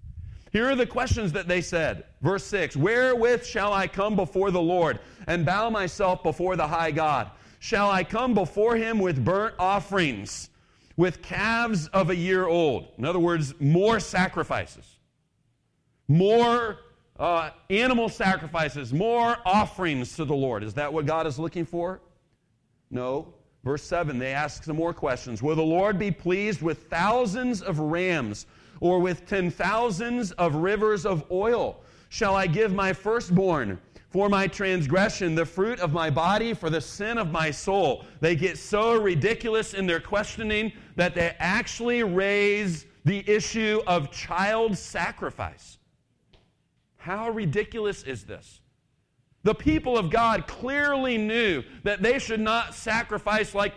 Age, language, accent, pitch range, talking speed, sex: 40-59, English, American, 160-215 Hz, 150 wpm, male